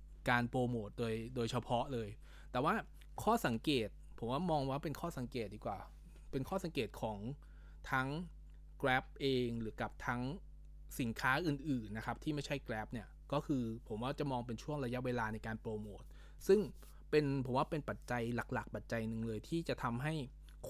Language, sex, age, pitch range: Thai, male, 20-39, 115-145 Hz